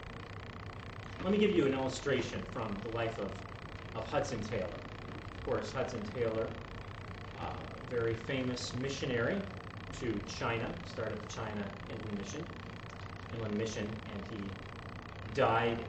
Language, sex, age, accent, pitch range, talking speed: English, male, 30-49, American, 95-125 Hz, 130 wpm